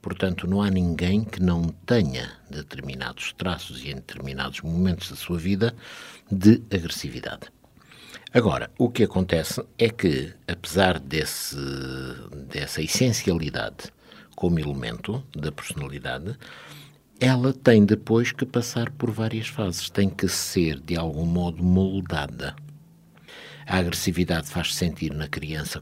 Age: 60-79